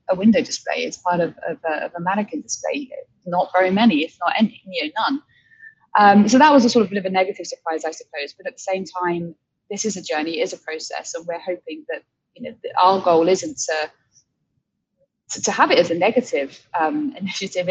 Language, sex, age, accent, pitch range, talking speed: English, female, 20-39, British, 175-240 Hz, 230 wpm